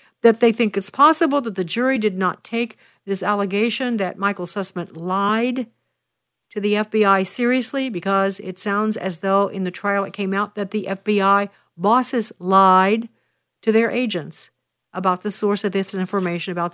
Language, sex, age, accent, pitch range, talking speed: English, female, 50-69, American, 180-215 Hz, 170 wpm